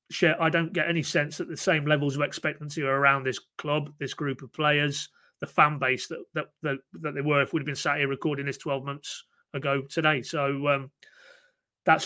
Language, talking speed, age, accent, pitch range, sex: English, 215 wpm, 30-49, British, 135-155 Hz, male